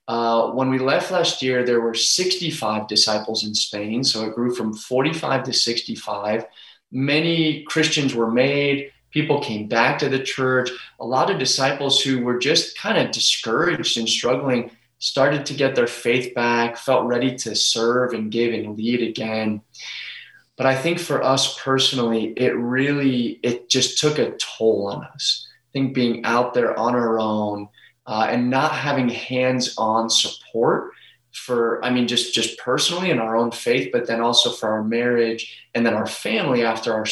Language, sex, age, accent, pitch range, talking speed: English, male, 20-39, American, 115-135 Hz, 175 wpm